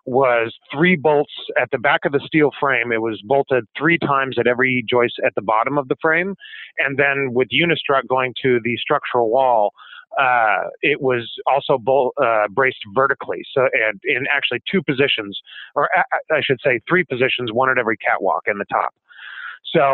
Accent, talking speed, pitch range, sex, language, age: American, 185 wpm, 125-155 Hz, male, English, 30-49